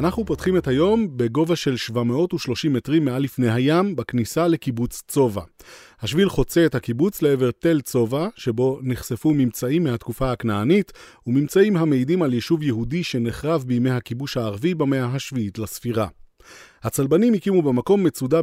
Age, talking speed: 30-49, 135 wpm